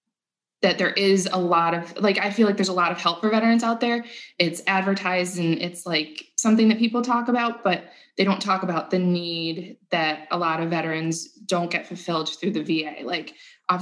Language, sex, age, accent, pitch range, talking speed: English, female, 20-39, American, 165-195 Hz, 215 wpm